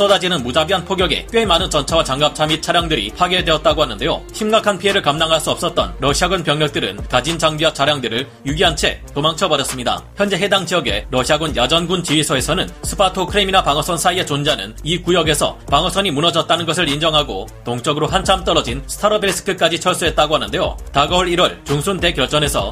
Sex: male